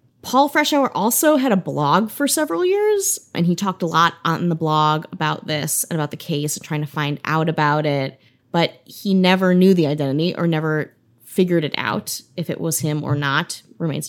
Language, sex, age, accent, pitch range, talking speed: English, female, 20-39, American, 155-210 Hz, 205 wpm